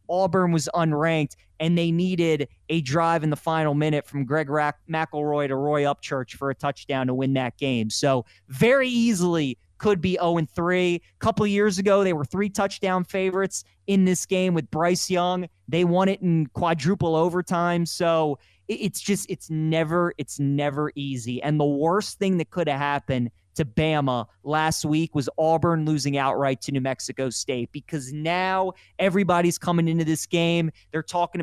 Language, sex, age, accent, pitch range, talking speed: English, male, 20-39, American, 145-180 Hz, 170 wpm